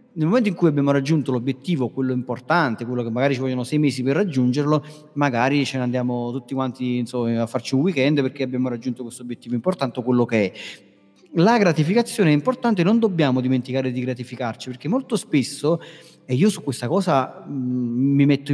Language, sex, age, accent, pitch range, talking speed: Italian, male, 30-49, native, 130-160 Hz, 180 wpm